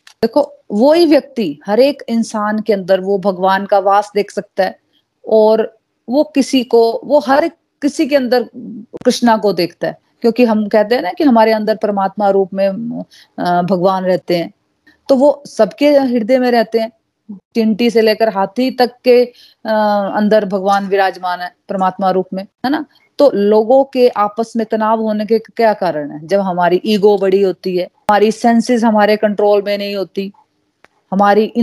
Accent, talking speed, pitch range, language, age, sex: native, 175 wpm, 195-235 Hz, Hindi, 30-49, female